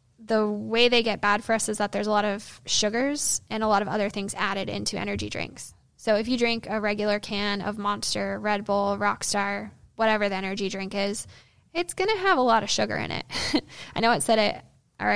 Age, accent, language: 10-29, American, English